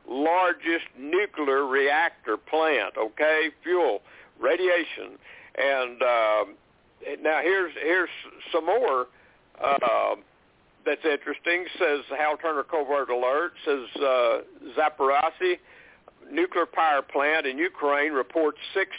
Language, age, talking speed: English, 60-79, 100 wpm